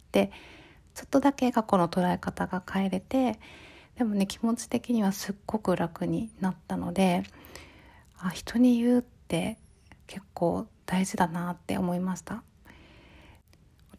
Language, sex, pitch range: Japanese, female, 180-220 Hz